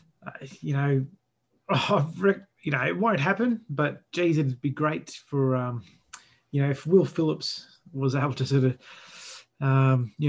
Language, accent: English, Australian